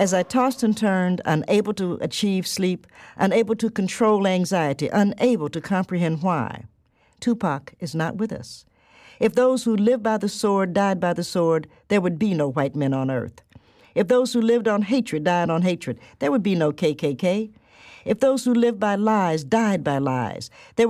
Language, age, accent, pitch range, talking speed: English, 60-79, American, 160-220 Hz, 185 wpm